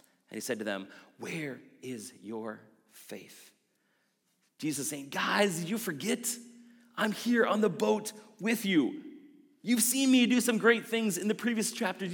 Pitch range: 145-230 Hz